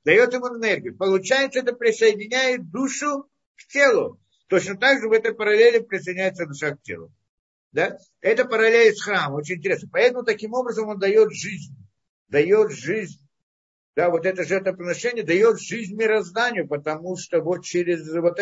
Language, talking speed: Russian, 155 wpm